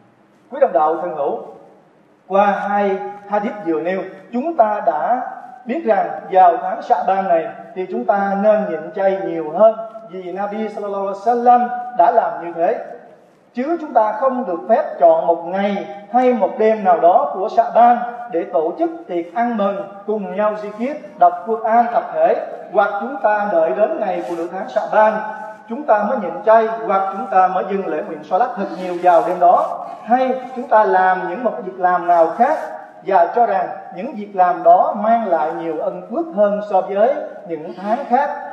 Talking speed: 195 wpm